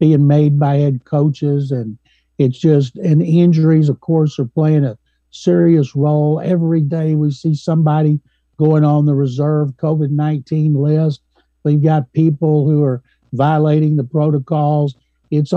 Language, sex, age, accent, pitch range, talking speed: English, male, 60-79, American, 145-175 Hz, 145 wpm